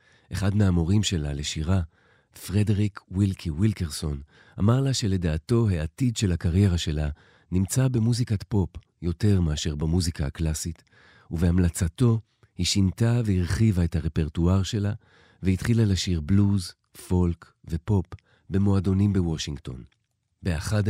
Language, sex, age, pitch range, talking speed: Hebrew, male, 40-59, 85-105 Hz, 105 wpm